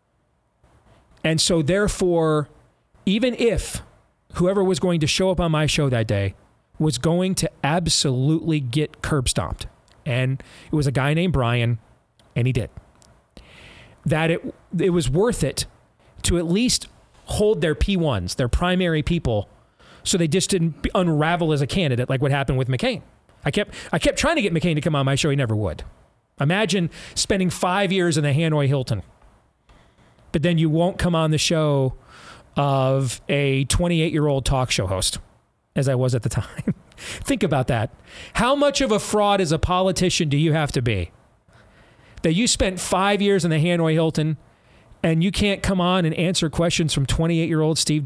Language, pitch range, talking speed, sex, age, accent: English, 130-175 Hz, 175 wpm, male, 30-49, American